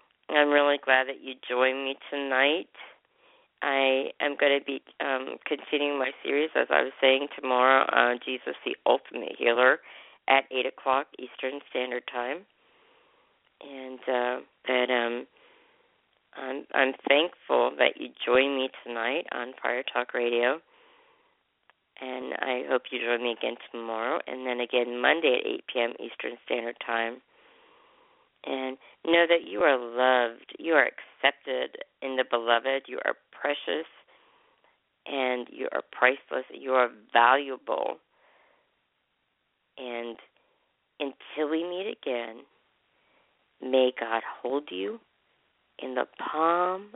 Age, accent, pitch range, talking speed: 40-59, American, 125-160 Hz, 130 wpm